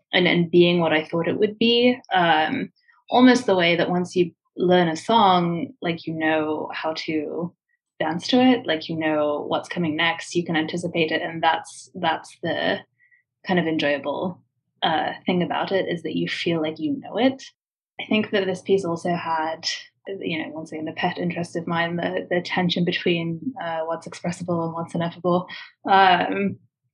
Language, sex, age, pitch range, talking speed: English, female, 20-39, 160-190 Hz, 185 wpm